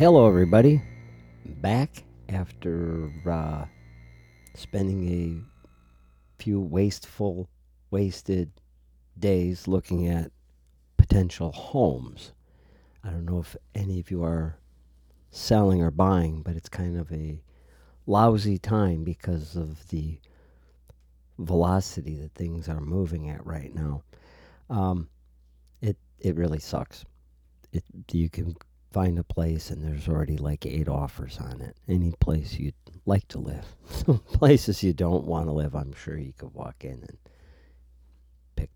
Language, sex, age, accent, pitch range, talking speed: English, male, 50-69, American, 65-95 Hz, 130 wpm